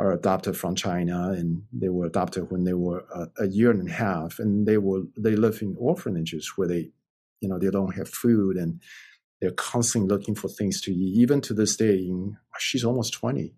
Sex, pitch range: male, 95-120 Hz